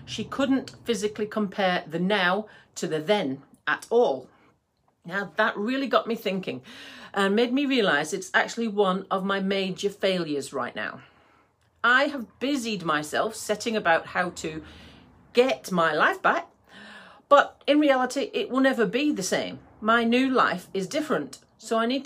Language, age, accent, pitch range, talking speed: English, 40-59, British, 190-250 Hz, 160 wpm